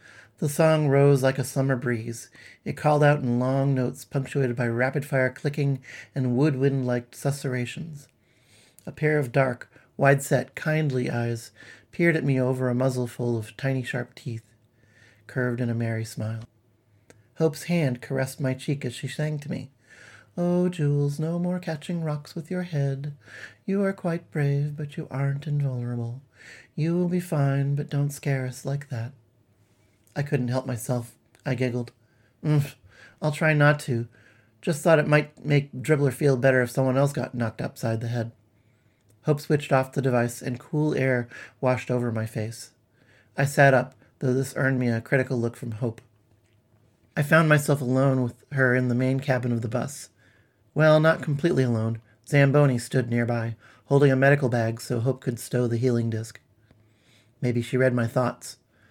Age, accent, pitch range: 40-59, American, 120-145 Hz